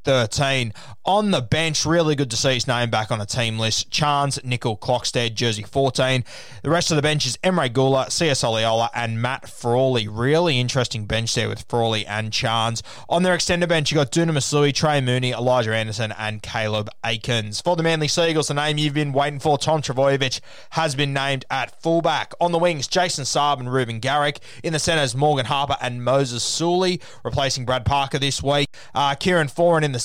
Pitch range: 120-155 Hz